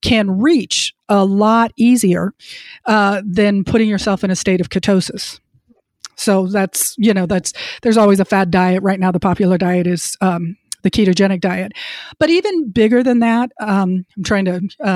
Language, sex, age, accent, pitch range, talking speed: English, female, 40-59, American, 190-235 Hz, 175 wpm